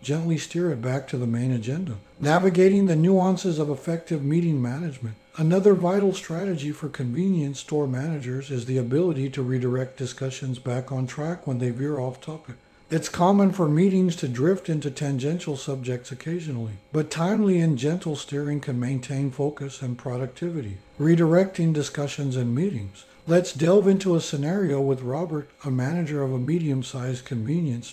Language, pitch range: English, 130-170 Hz